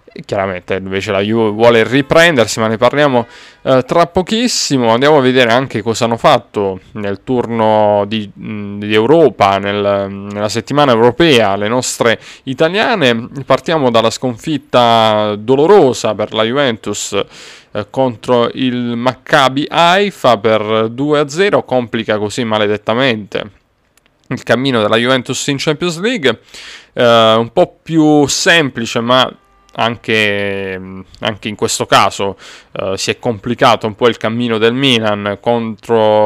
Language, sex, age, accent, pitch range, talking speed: Italian, male, 30-49, native, 105-130 Hz, 125 wpm